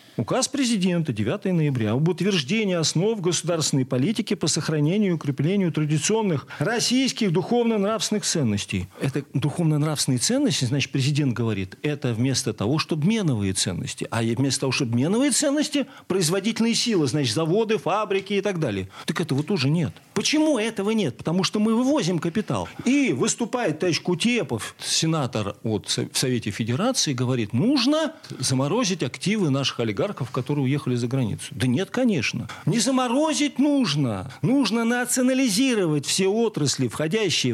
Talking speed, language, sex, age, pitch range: 135 wpm, Russian, male, 40-59, 135-220 Hz